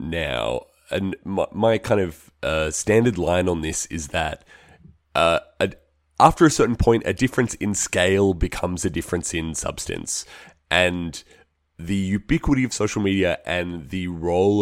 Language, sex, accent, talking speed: English, male, Australian, 150 wpm